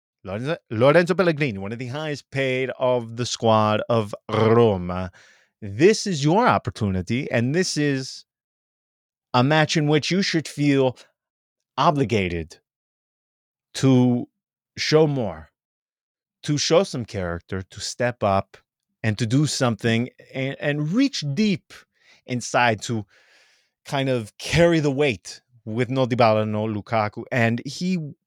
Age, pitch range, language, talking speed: 30-49, 110-150 Hz, English, 125 wpm